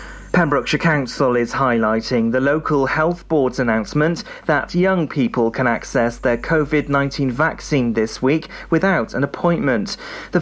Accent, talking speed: British, 130 wpm